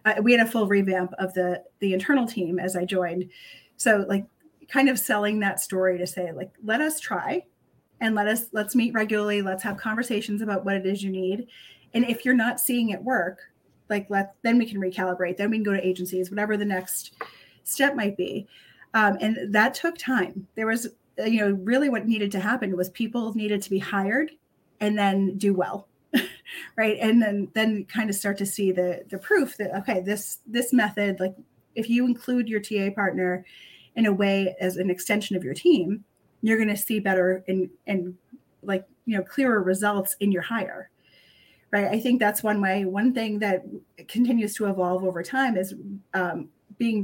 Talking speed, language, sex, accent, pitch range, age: 200 wpm, English, female, American, 190-230 Hz, 30-49